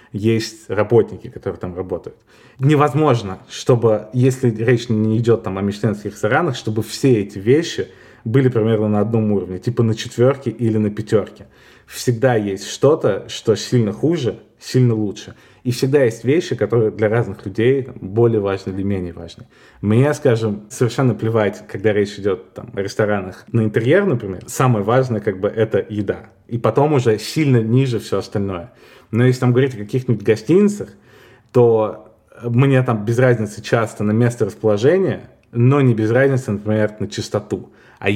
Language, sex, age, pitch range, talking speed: Russian, male, 20-39, 105-125 Hz, 155 wpm